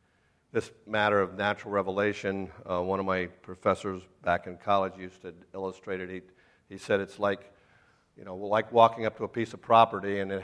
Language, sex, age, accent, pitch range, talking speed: English, male, 50-69, American, 95-105 Hz, 195 wpm